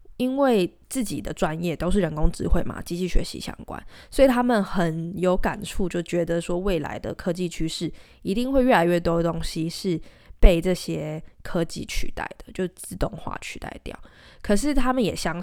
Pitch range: 165-195 Hz